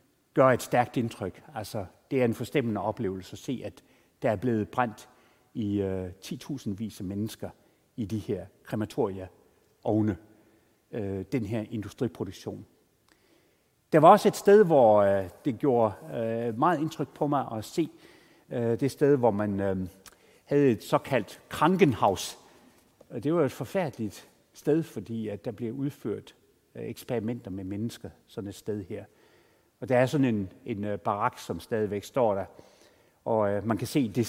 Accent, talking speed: native, 160 wpm